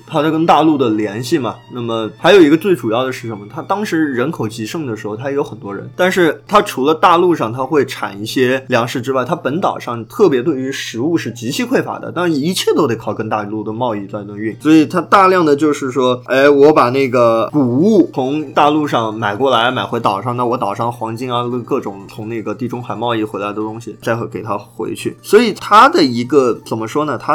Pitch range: 110-150 Hz